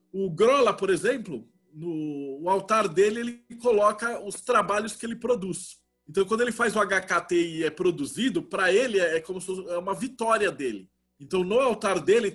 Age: 20-39